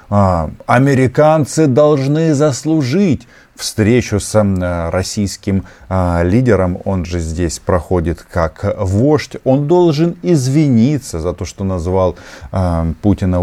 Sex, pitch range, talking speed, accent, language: male, 95-130 Hz, 95 wpm, native, Russian